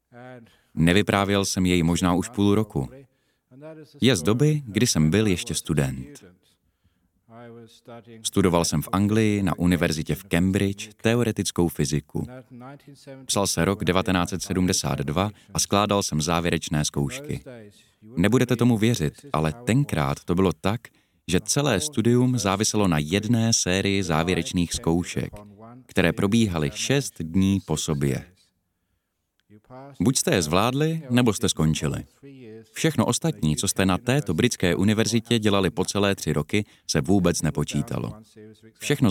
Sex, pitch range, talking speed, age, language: male, 85-115 Hz, 125 wpm, 30-49, Czech